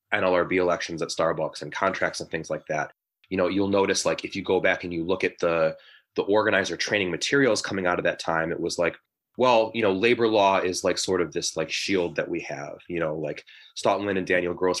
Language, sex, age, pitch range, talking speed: English, male, 20-39, 85-105 Hz, 235 wpm